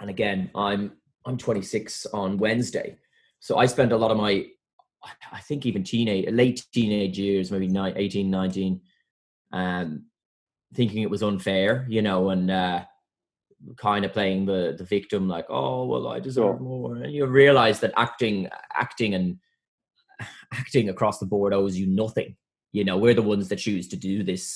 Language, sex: English, male